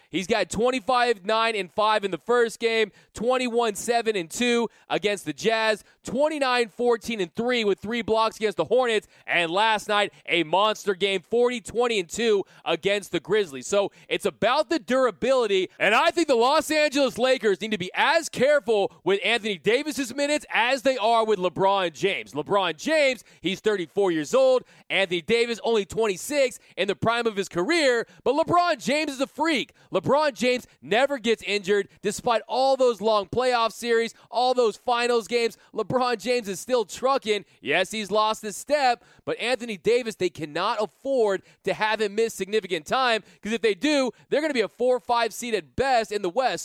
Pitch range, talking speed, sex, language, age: 205-255 Hz, 175 wpm, male, English, 20-39